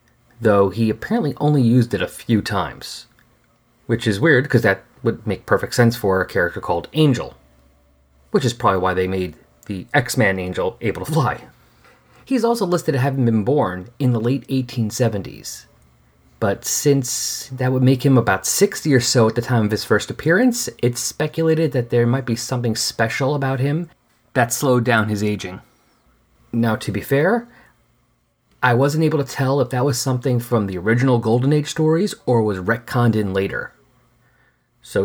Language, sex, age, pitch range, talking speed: English, male, 30-49, 110-135 Hz, 175 wpm